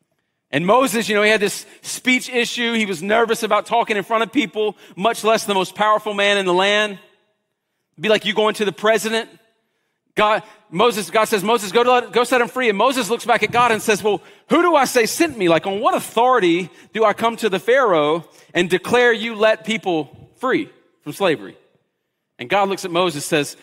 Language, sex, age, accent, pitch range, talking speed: English, male, 40-59, American, 205-245 Hz, 220 wpm